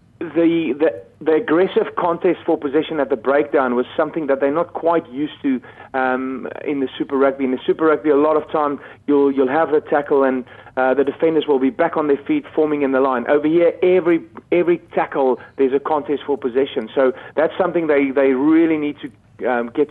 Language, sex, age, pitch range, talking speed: English, male, 40-59, 135-160 Hz, 210 wpm